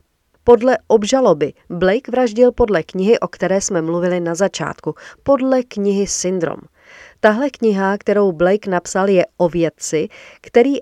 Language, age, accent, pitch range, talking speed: Czech, 40-59, native, 170-220 Hz, 135 wpm